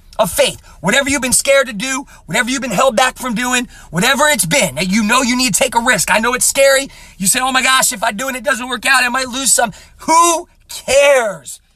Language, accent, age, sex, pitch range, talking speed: English, American, 30-49, male, 195-265 Hz, 250 wpm